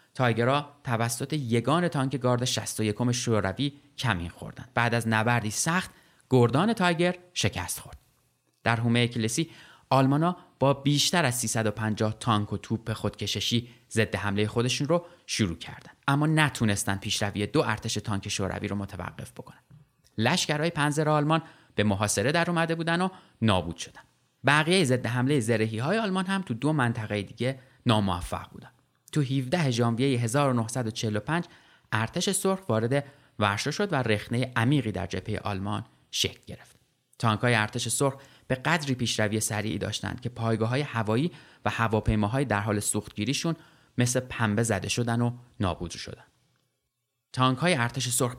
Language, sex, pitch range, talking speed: Persian, male, 110-145 Hz, 140 wpm